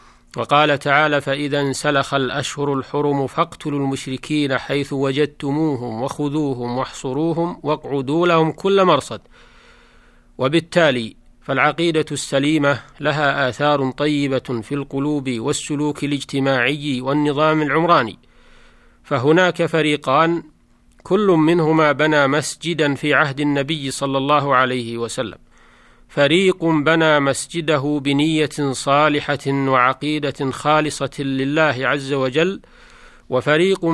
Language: Arabic